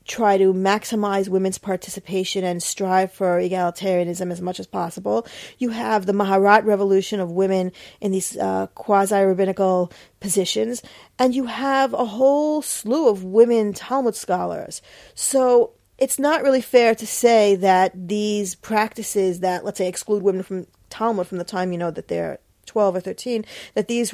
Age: 40-59